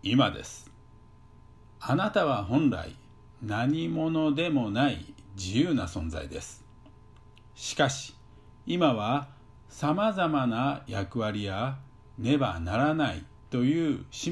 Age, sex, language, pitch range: 50-69, male, Japanese, 110-160 Hz